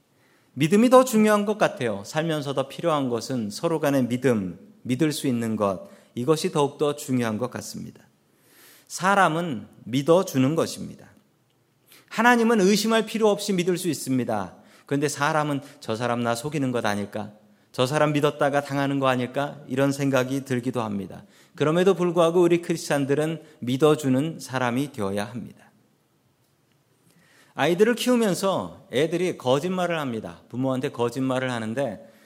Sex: male